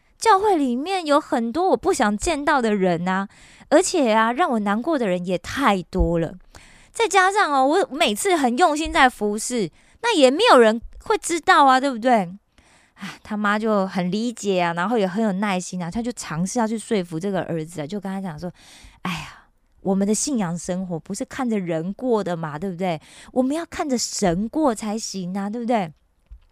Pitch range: 195-295 Hz